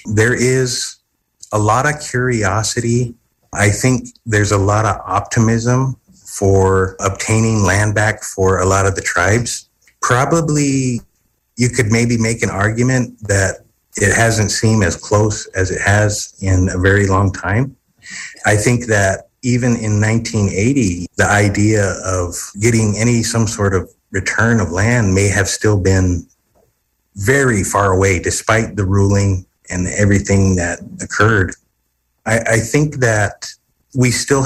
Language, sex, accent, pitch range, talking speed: English, male, American, 95-120 Hz, 140 wpm